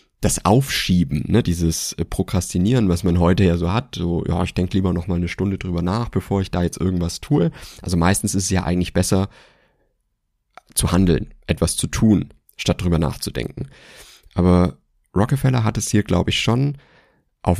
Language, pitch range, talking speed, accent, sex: German, 85-105 Hz, 170 wpm, German, male